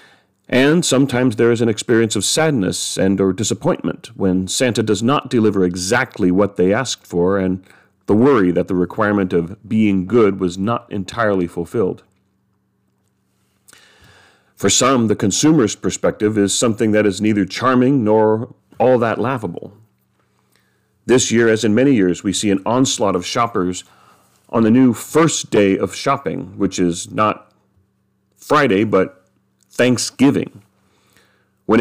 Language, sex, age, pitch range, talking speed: English, male, 40-59, 95-120 Hz, 140 wpm